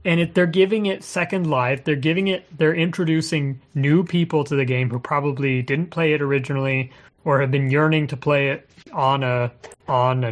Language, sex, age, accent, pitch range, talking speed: English, male, 30-49, American, 130-155 Hz, 200 wpm